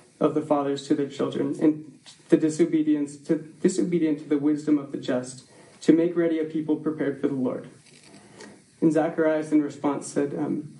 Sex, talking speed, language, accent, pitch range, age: male, 180 wpm, English, American, 145-165 Hz, 20-39